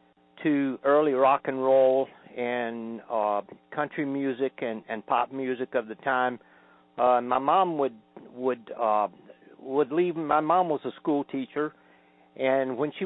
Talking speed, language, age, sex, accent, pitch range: 150 wpm, English, 50-69, male, American, 115-150 Hz